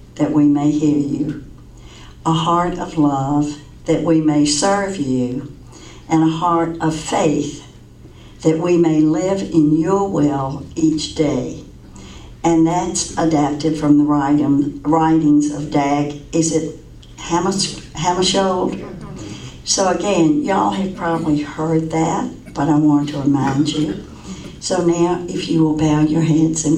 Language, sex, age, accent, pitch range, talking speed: English, female, 60-79, American, 145-165 Hz, 135 wpm